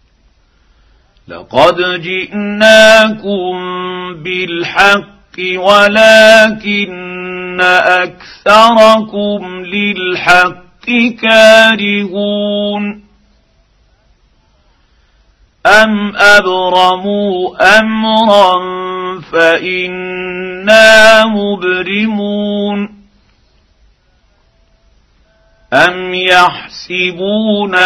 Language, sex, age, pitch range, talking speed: Arabic, male, 50-69, 180-215 Hz, 30 wpm